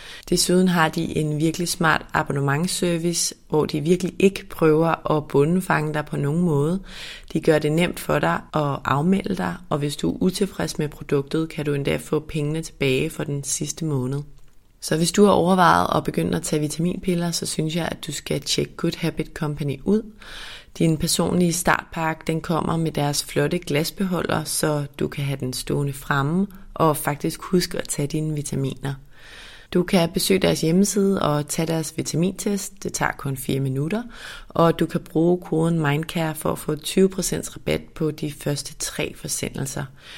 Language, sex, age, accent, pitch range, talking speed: Danish, female, 30-49, native, 145-175 Hz, 175 wpm